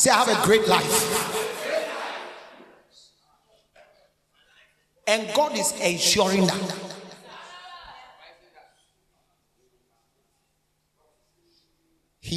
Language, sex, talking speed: English, male, 55 wpm